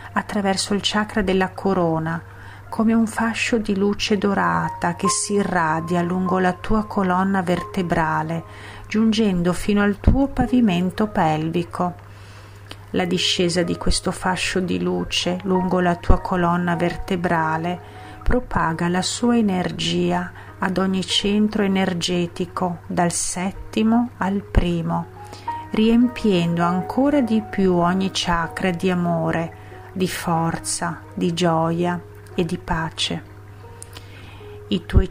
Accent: native